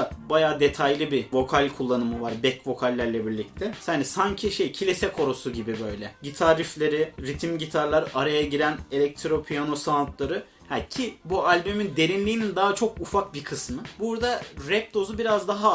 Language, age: Turkish, 30-49